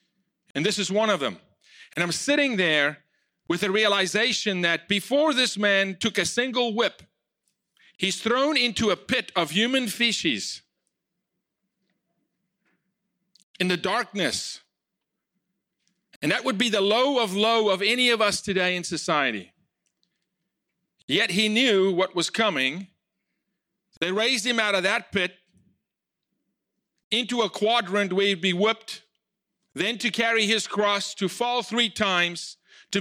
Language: English